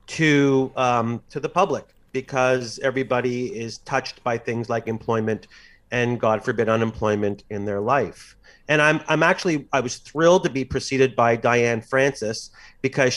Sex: male